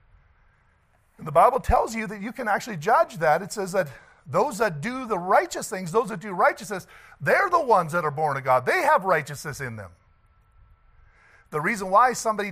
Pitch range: 160-235 Hz